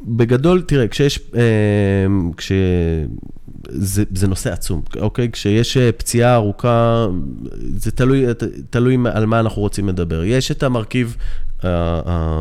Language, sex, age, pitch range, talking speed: Hebrew, male, 20-39, 100-120 Hz, 105 wpm